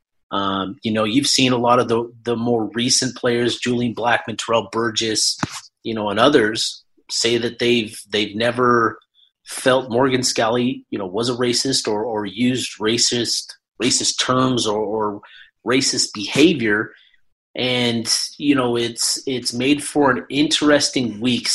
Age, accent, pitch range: 30-49, American, 120-135 Hz